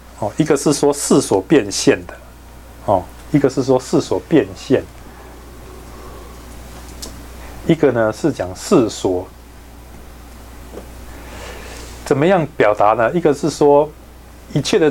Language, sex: Chinese, male